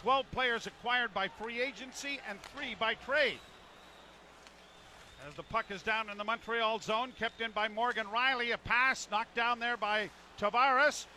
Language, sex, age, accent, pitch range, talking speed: English, male, 50-69, American, 210-255 Hz, 165 wpm